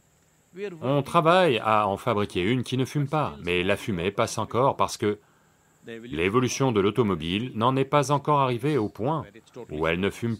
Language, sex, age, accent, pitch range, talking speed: English, male, 40-59, French, 100-145 Hz, 180 wpm